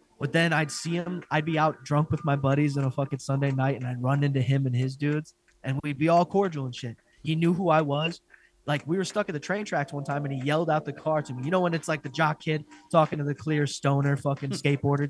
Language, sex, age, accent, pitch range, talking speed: English, male, 20-39, American, 145-200 Hz, 280 wpm